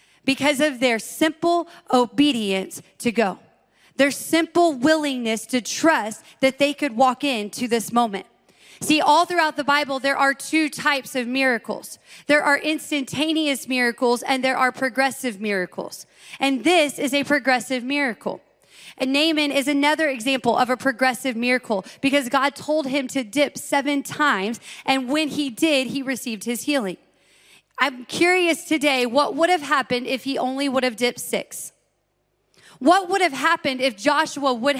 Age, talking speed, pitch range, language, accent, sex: 30-49, 155 wpm, 250-310 Hz, English, American, female